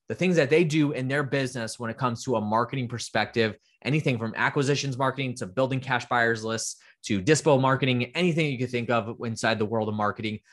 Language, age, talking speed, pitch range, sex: English, 20-39, 210 wpm, 110-135 Hz, male